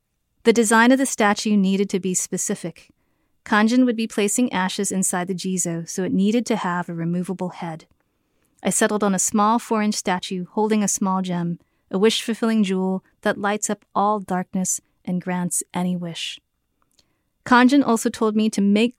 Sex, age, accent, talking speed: female, 30-49, American, 170 wpm